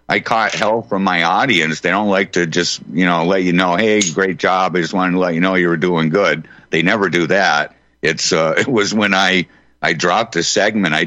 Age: 50-69